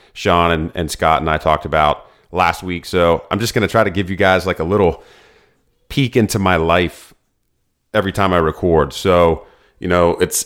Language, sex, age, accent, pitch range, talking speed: English, male, 30-49, American, 85-100 Hz, 200 wpm